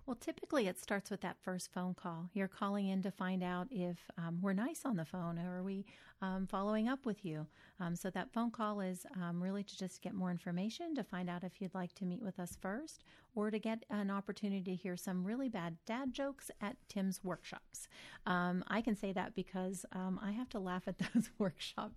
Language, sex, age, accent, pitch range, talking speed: English, female, 40-59, American, 180-210 Hz, 225 wpm